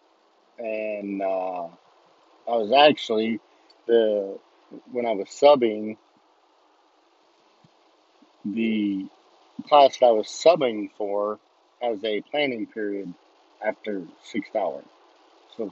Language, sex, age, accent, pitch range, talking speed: English, male, 50-69, American, 100-120 Hz, 95 wpm